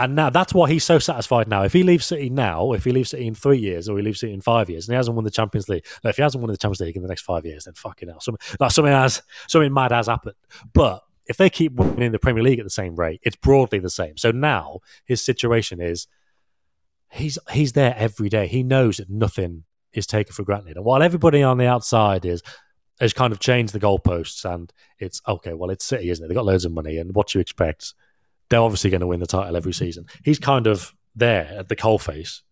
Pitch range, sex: 95-130 Hz, male